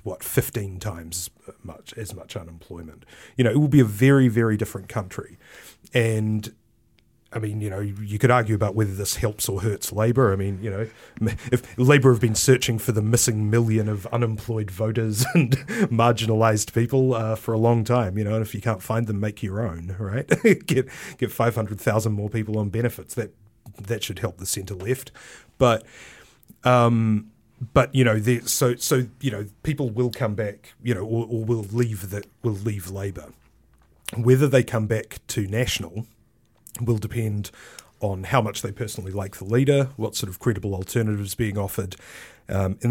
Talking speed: 185 wpm